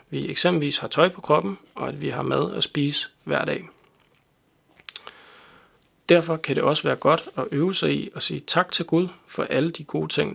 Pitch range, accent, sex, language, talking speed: 135-170 Hz, native, male, Danish, 205 wpm